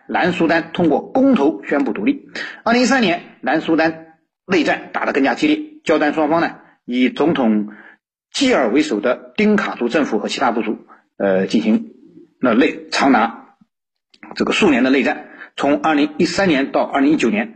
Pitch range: 135-225 Hz